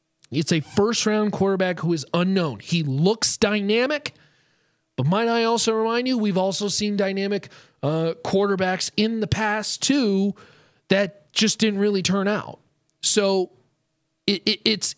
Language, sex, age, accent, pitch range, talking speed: English, male, 30-49, American, 150-205 Hz, 140 wpm